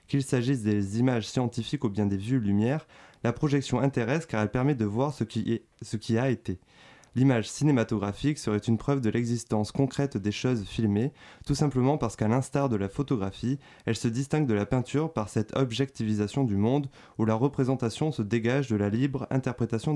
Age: 20-39